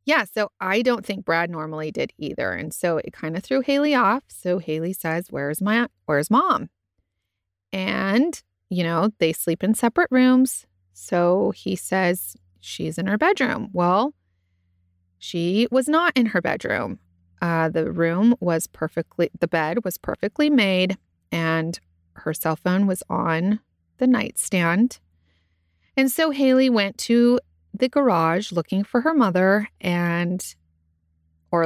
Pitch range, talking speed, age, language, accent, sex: 155-210 Hz, 145 wpm, 30-49, English, American, female